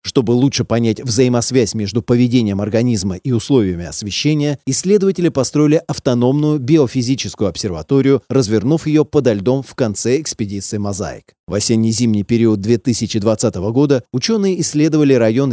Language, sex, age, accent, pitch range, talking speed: Russian, male, 30-49, native, 110-145 Hz, 120 wpm